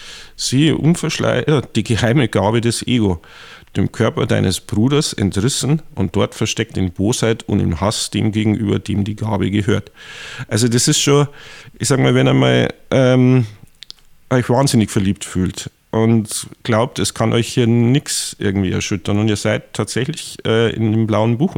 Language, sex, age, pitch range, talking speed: German, male, 50-69, 105-125 Hz, 160 wpm